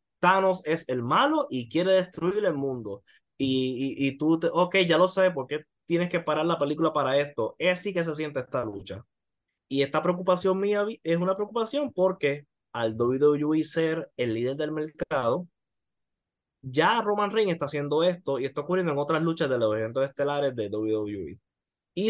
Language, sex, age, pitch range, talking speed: English, male, 20-39, 125-180 Hz, 185 wpm